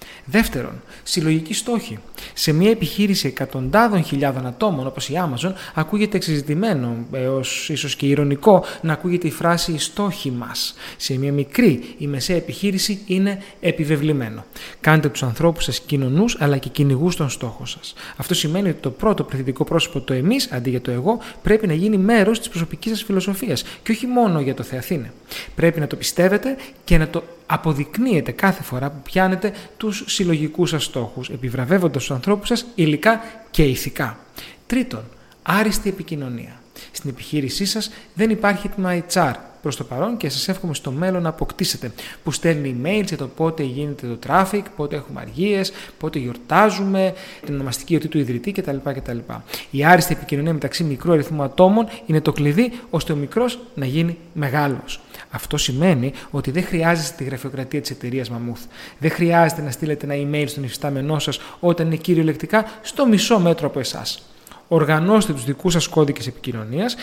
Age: 30-49